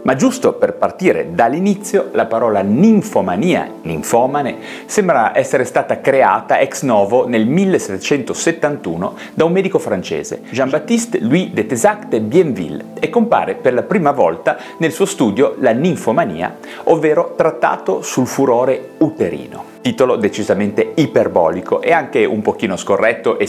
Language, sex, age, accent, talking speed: Italian, male, 30-49, native, 135 wpm